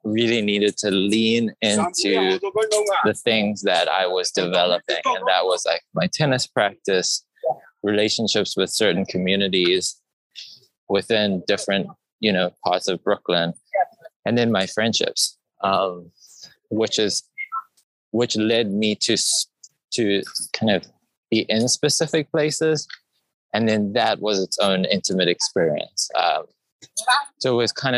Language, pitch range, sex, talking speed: English, 100-150 Hz, male, 130 wpm